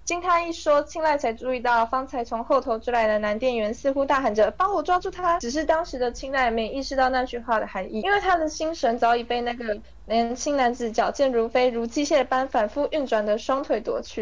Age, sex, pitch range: 20-39, female, 235-295 Hz